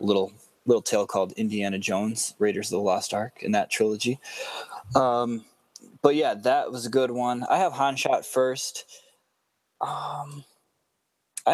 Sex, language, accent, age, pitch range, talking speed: male, English, American, 20-39, 105-135 Hz, 150 wpm